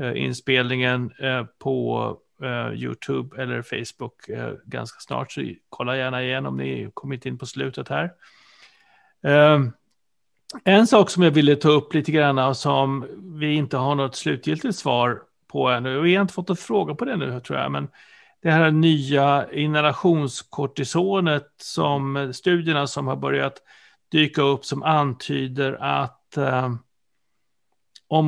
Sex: male